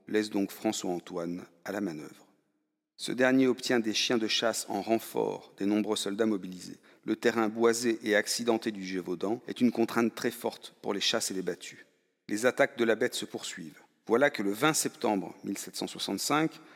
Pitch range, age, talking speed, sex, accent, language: 100-125 Hz, 40-59, 180 wpm, male, French, French